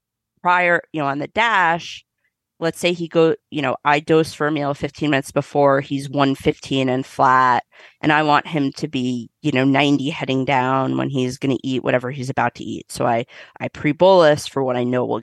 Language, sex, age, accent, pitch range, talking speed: English, female, 30-49, American, 135-160 Hz, 215 wpm